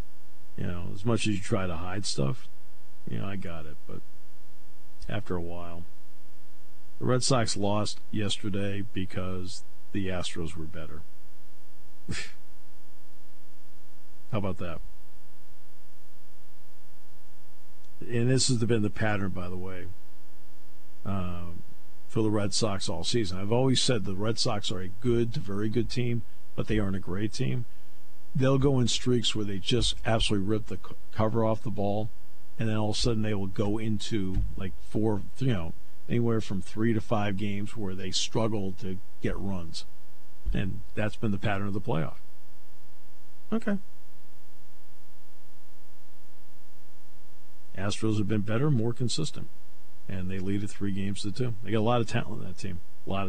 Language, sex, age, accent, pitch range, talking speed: English, male, 50-69, American, 75-105 Hz, 155 wpm